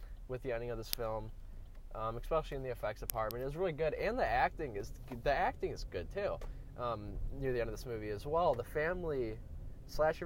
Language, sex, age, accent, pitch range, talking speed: English, male, 10-29, American, 100-130 Hz, 215 wpm